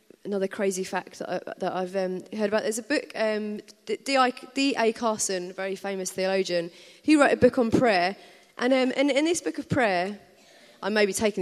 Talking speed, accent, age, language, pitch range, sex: 195 wpm, British, 30-49, English, 185-255 Hz, female